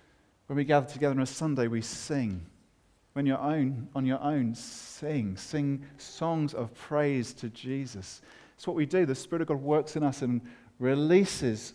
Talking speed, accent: 180 wpm, British